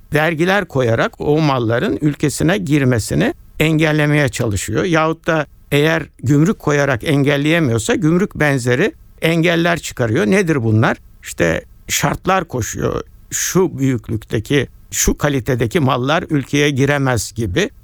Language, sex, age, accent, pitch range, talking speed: Turkish, male, 60-79, native, 120-165 Hz, 105 wpm